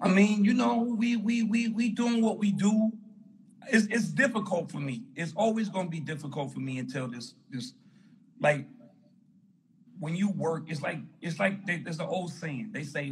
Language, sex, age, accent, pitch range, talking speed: English, male, 40-59, American, 140-215 Hz, 190 wpm